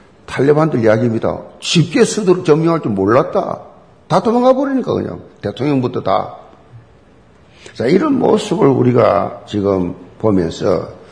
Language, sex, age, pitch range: Korean, male, 50-69, 120-175 Hz